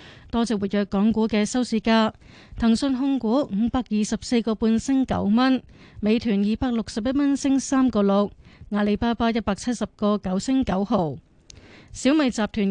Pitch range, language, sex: 190-235 Hz, Chinese, female